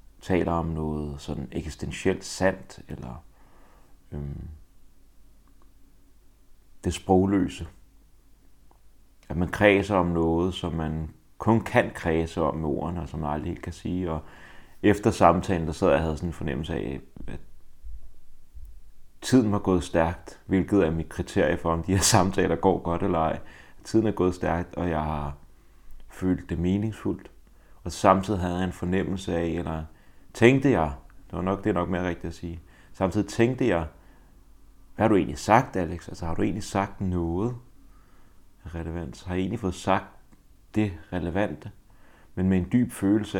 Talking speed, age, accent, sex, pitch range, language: 160 wpm, 30-49, native, male, 80-95 Hz, Danish